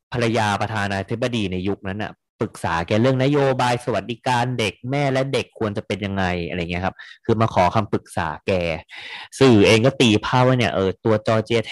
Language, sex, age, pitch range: Thai, male, 20-39, 95-120 Hz